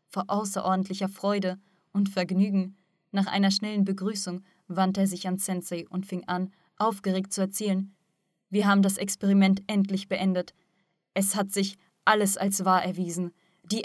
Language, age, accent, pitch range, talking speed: German, 20-39, German, 180-200 Hz, 145 wpm